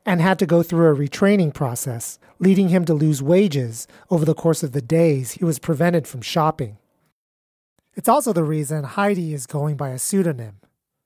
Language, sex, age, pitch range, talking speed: English, male, 30-49, 135-190 Hz, 185 wpm